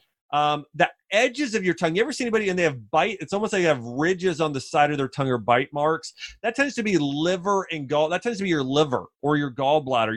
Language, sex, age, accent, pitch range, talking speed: English, male, 30-49, American, 135-165 Hz, 265 wpm